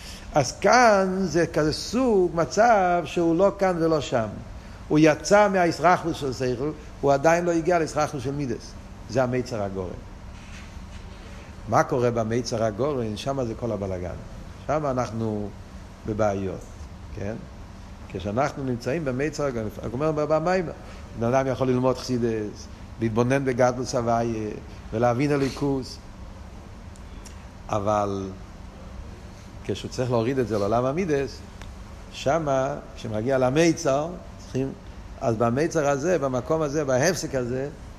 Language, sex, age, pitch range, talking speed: Hebrew, male, 50-69, 100-145 Hz, 120 wpm